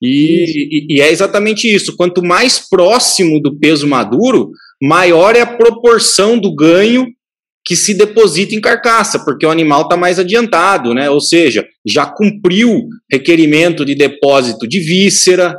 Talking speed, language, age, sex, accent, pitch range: 145 wpm, Portuguese, 20-39, male, Brazilian, 150-215 Hz